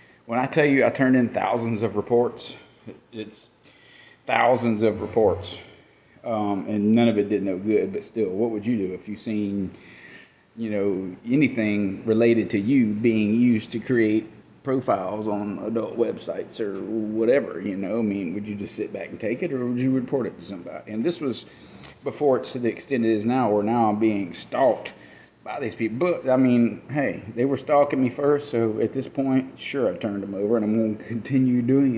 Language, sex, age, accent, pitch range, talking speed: English, male, 40-59, American, 105-125 Hz, 205 wpm